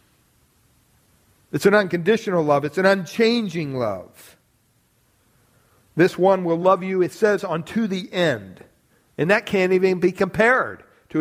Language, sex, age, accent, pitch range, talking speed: English, male, 50-69, American, 145-200 Hz, 135 wpm